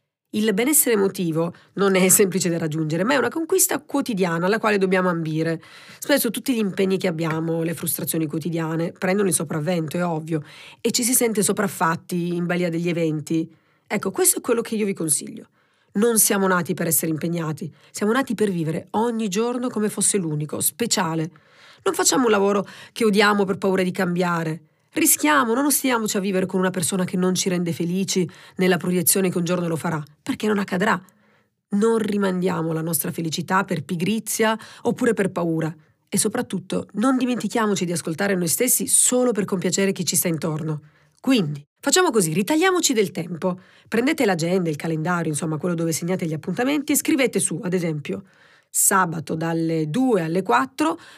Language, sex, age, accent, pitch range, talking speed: Italian, female, 40-59, native, 165-220 Hz, 175 wpm